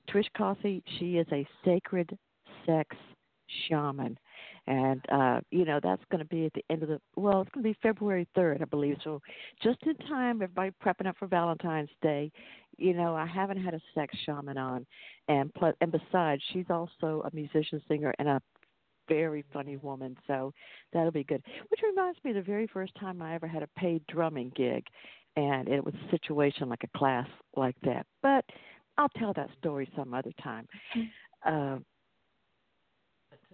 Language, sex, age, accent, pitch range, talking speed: English, female, 60-79, American, 145-185 Hz, 180 wpm